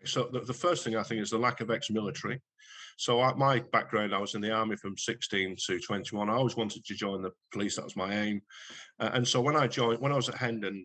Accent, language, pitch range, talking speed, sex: British, English, 100-120 Hz, 260 wpm, male